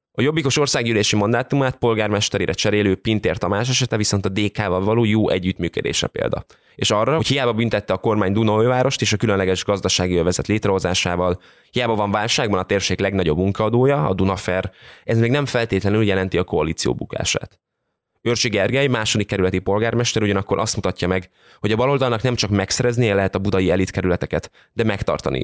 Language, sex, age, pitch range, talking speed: Hungarian, male, 20-39, 95-120 Hz, 160 wpm